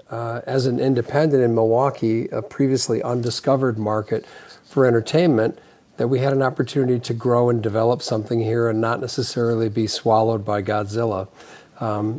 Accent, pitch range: American, 115-135 Hz